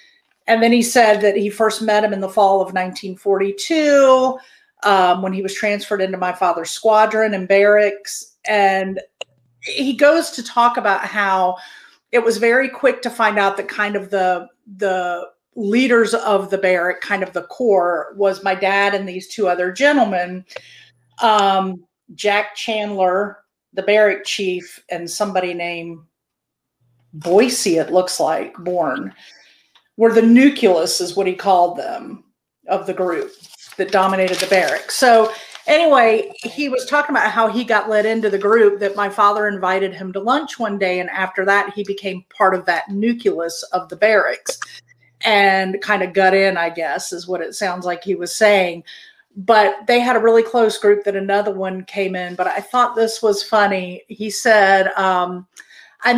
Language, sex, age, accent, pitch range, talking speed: English, female, 40-59, American, 185-225 Hz, 170 wpm